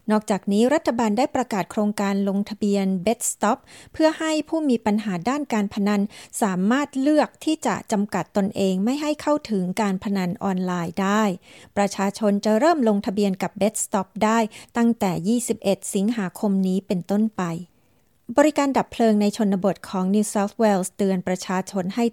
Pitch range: 195-235 Hz